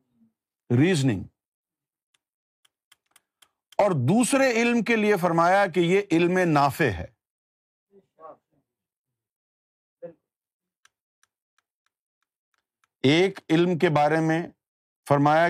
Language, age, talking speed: Urdu, 50-69, 70 wpm